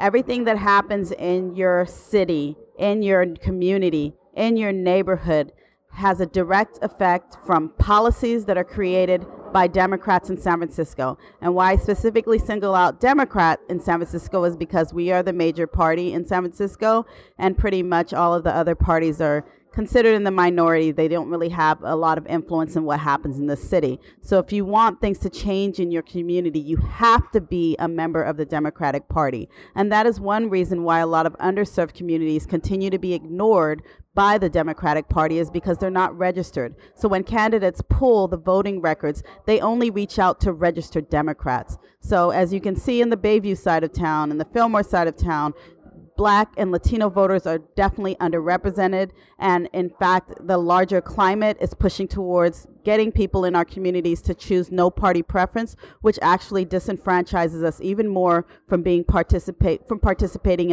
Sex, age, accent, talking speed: female, 40-59, American, 185 wpm